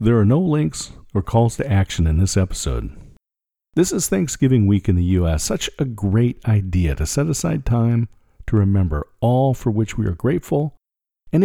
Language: English